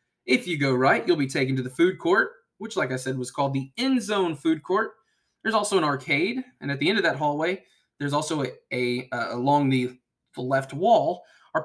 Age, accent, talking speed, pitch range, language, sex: 20-39, American, 225 wpm, 125-170 Hz, English, male